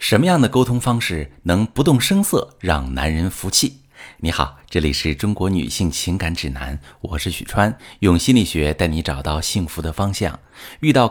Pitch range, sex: 80-130 Hz, male